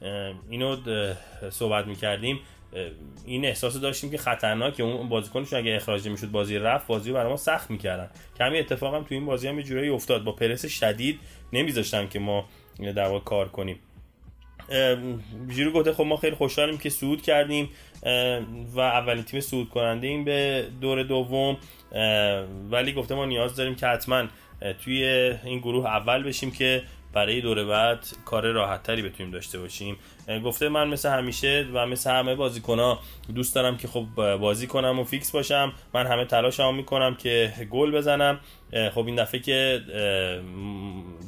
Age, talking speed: 20-39, 160 wpm